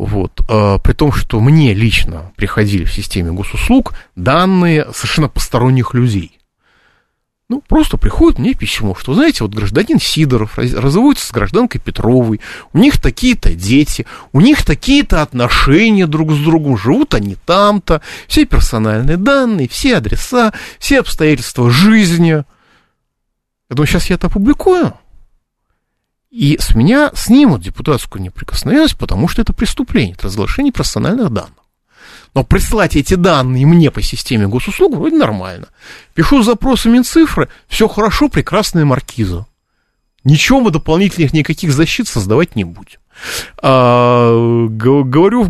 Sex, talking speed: male, 130 wpm